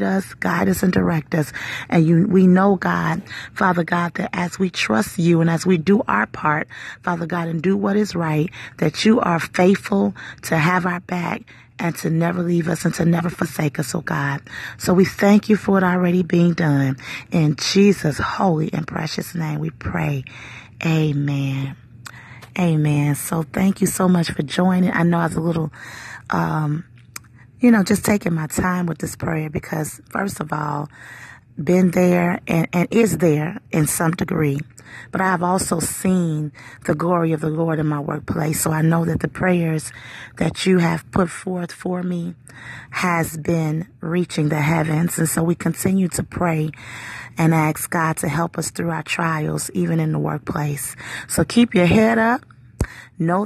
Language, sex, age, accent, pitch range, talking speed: English, female, 30-49, American, 150-185 Hz, 180 wpm